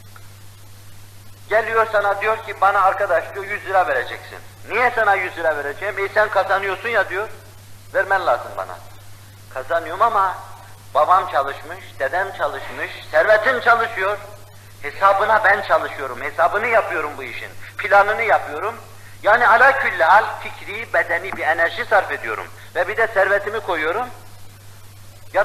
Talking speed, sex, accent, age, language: 130 wpm, male, native, 50-69, Turkish